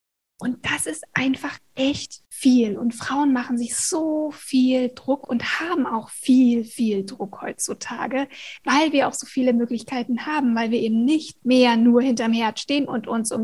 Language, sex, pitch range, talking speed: German, female, 235-270 Hz, 175 wpm